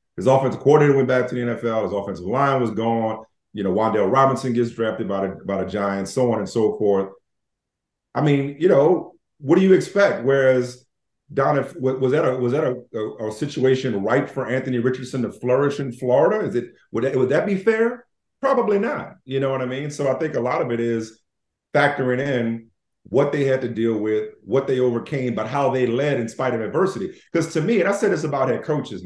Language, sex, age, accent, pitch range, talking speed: English, male, 40-59, American, 115-145 Hz, 225 wpm